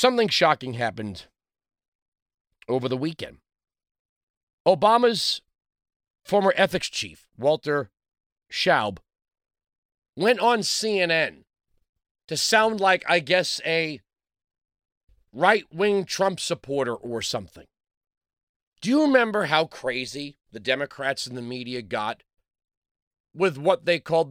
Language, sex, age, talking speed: English, male, 40-59, 100 wpm